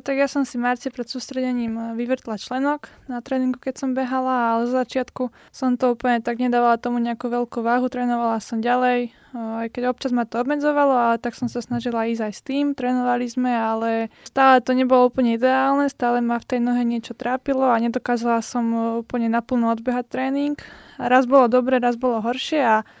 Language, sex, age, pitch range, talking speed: Slovak, female, 20-39, 230-255 Hz, 190 wpm